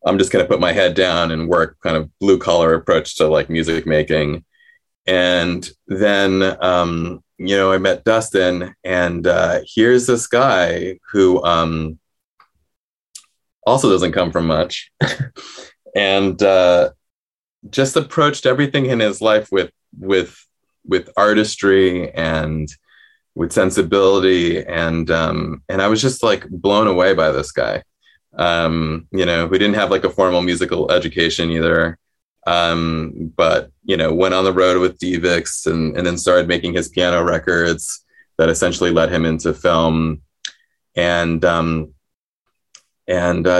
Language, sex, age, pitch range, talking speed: English, male, 20-39, 80-95 Hz, 145 wpm